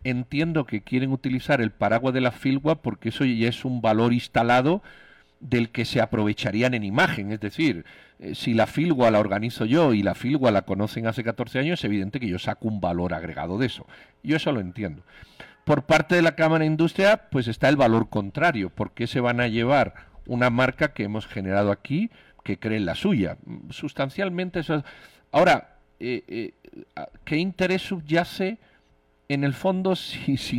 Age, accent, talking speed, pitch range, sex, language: 50-69, Spanish, 180 wpm, 115-155 Hz, male, Spanish